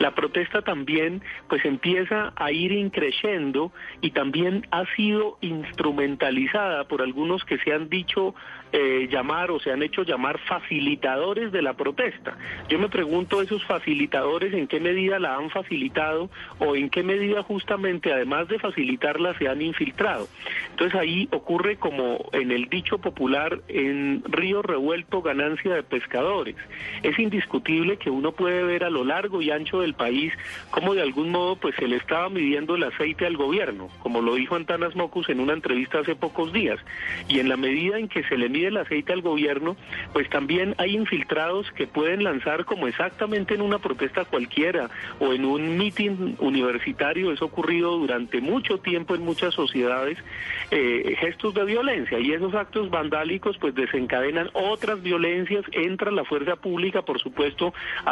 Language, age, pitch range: Spanish, 40-59, 150-200 Hz